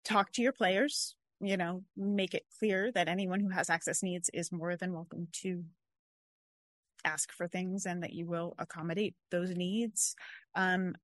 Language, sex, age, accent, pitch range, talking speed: English, female, 30-49, American, 170-190 Hz, 170 wpm